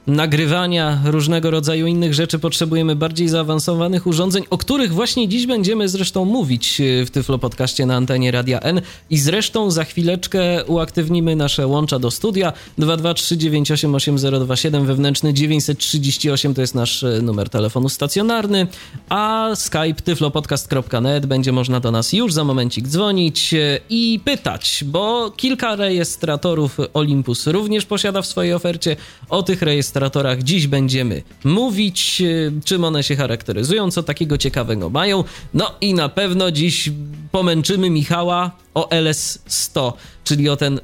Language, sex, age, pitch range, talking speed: Polish, male, 20-39, 140-180 Hz, 130 wpm